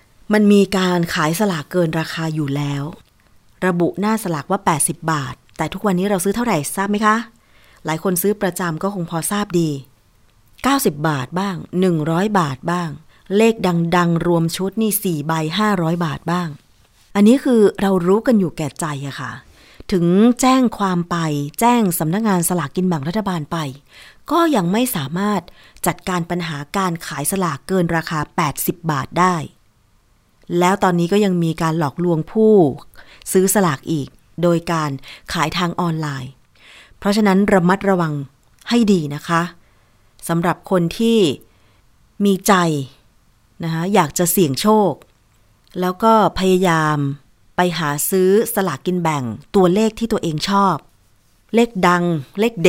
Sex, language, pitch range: female, Thai, 150-195 Hz